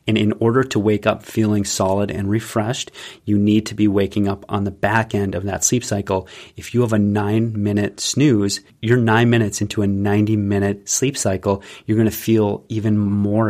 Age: 30-49